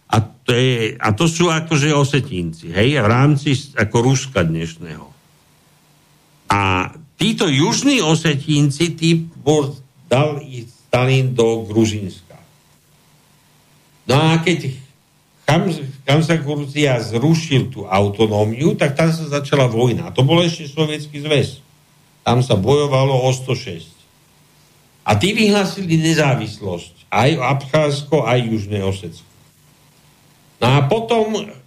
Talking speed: 115 wpm